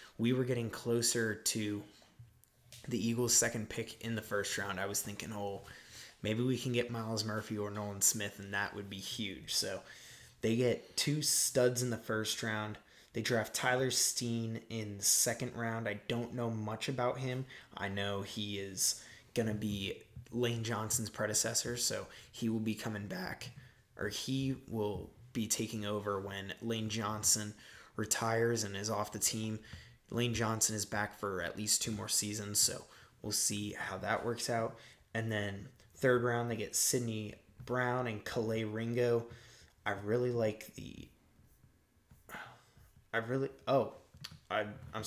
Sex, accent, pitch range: male, American, 105-120 Hz